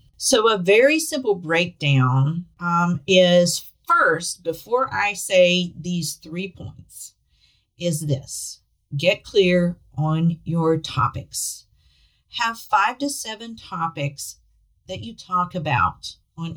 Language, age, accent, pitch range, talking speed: English, 40-59, American, 140-190 Hz, 110 wpm